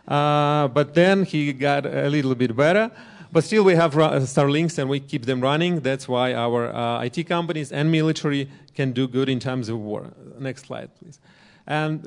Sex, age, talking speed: male, 30-49, 190 wpm